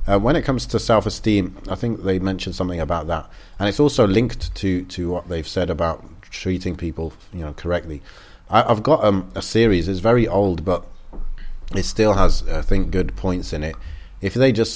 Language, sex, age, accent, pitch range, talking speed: English, male, 30-49, British, 90-105 Hz, 205 wpm